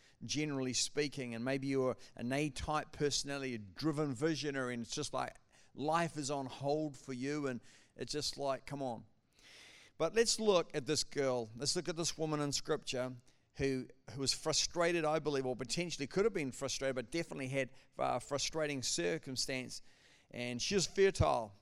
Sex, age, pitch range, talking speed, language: male, 50-69, 130-155 Hz, 175 wpm, English